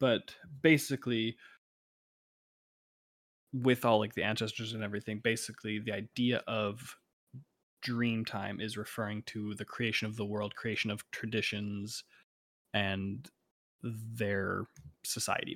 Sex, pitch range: male, 105-120 Hz